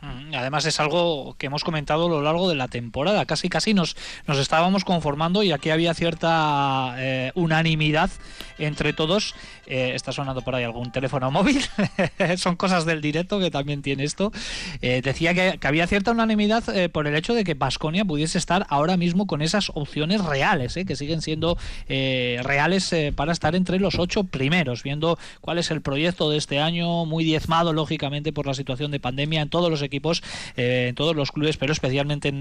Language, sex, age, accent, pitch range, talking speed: Spanish, male, 20-39, Spanish, 135-170 Hz, 195 wpm